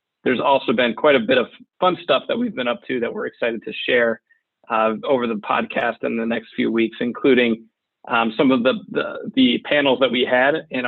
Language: English